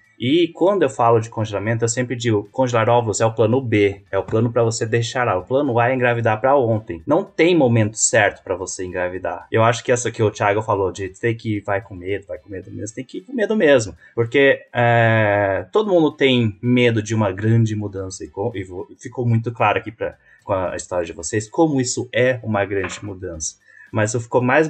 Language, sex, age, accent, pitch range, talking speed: Portuguese, male, 20-39, Brazilian, 100-125 Hz, 220 wpm